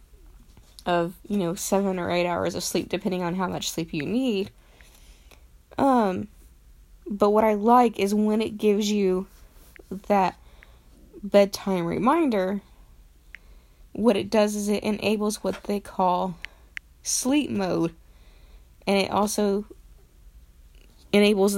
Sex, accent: female, American